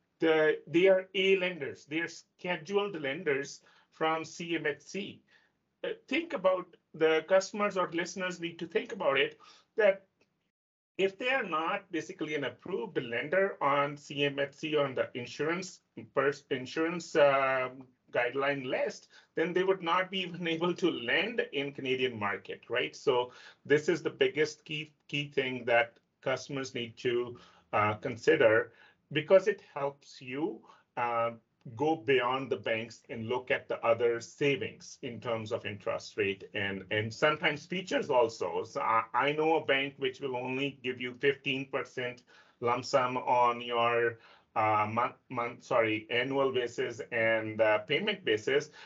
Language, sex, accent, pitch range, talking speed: English, male, Indian, 125-180 Hz, 145 wpm